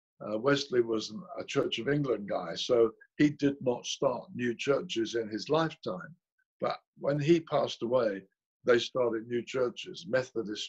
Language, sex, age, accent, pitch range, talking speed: English, male, 60-79, British, 120-180 Hz, 165 wpm